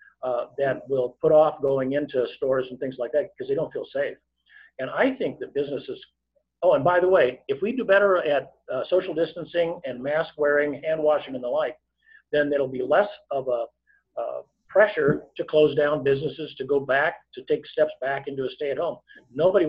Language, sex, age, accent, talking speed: English, male, 50-69, American, 205 wpm